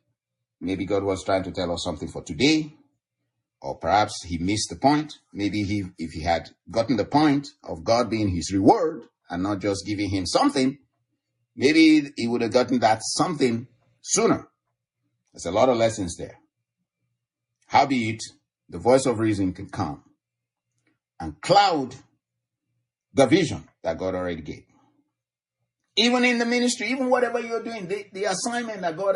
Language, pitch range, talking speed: English, 85-135 Hz, 160 wpm